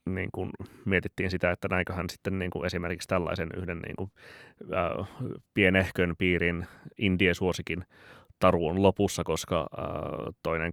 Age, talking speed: 30-49, 110 wpm